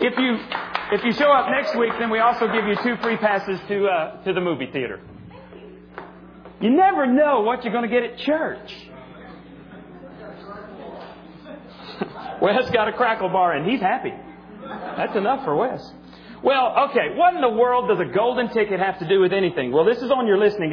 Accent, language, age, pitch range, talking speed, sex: American, English, 40-59, 180-240 Hz, 190 wpm, male